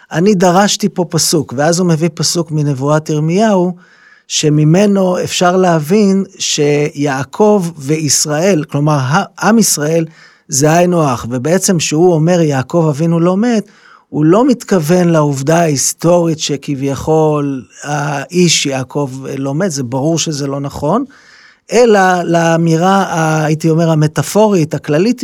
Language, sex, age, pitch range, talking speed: Hebrew, male, 30-49, 145-180 Hz, 115 wpm